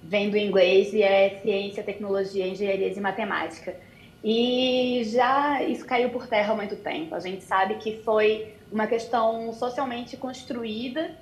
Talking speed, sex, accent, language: 150 wpm, female, Brazilian, Portuguese